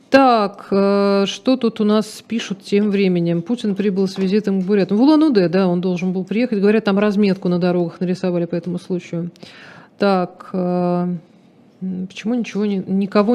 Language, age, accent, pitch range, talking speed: Russian, 40-59, native, 175-215 Hz, 150 wpm